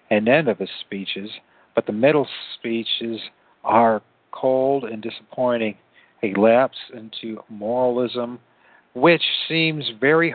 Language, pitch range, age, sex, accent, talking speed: English, 110-130 Hz, 60-79, male, American, 115 wpm